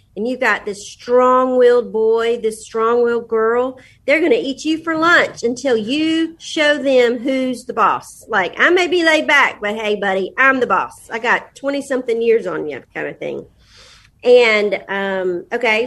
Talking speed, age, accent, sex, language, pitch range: 180 wpm, 40-59, American, female, English, 210-270 Hz